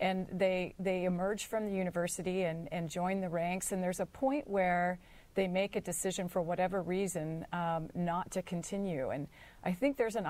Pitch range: 170-195 Hz